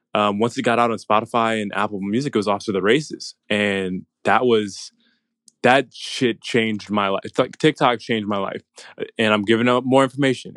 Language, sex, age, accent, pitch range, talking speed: English, male, 20-39, American, 105-120 Hz, 205 wpm